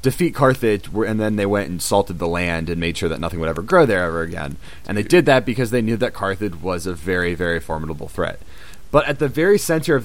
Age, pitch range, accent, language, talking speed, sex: 30-49, 95-120 Hz, American, English, 250 wpm, male